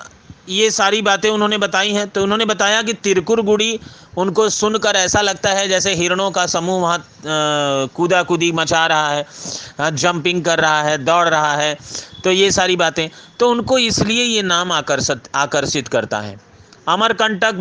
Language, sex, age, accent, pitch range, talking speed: Hindi, male, 40-59, native, 150-205 Hz, 155 wpm